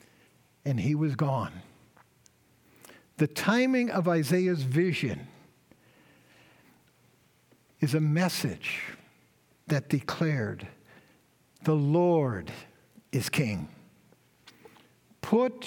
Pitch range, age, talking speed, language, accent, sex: 150-205 Hz, 60-79, 75 wpm, English, American, male